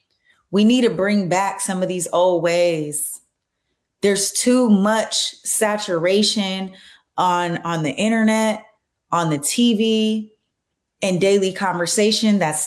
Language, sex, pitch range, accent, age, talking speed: English, female, 170-245 Hz, American, 20-39, 120 wpm